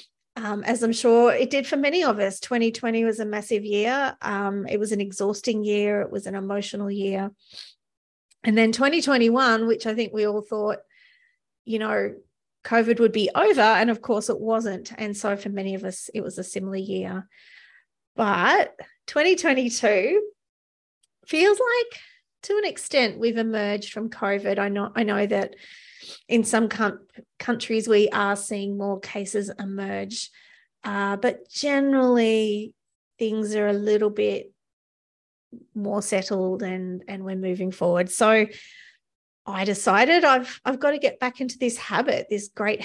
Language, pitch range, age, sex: English, 200-255 Hz, 30-49, female